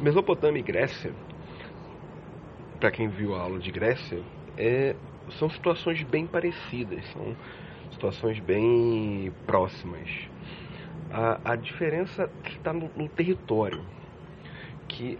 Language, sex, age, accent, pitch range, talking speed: English, male, 40-59, Brazilian, 115-170 Hz, 105 wpm